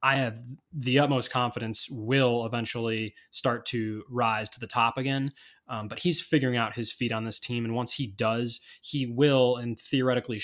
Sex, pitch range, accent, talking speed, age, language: male, 110-130 Hz, American, 185 wpm, 20-39, English